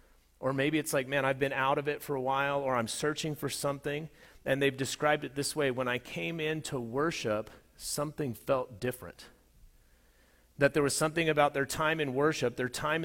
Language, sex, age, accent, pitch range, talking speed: English, male, 40-59, American, 135-175 Hz, 200 wpm